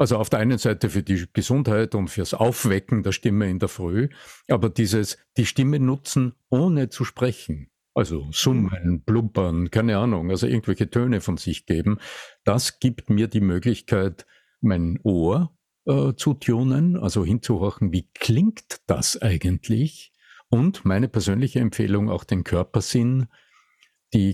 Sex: male